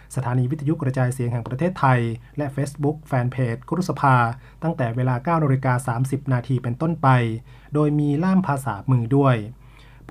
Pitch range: 125-140 Hz